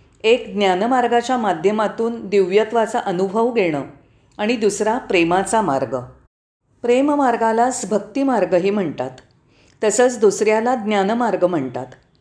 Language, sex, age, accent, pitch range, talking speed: Marathi, female, 40-59, native, 150-235 Hz, 85 wpm